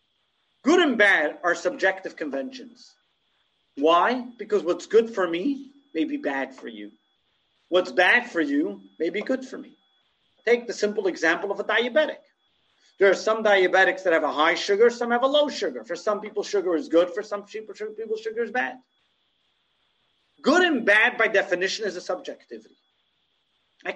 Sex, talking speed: male, 170 wpm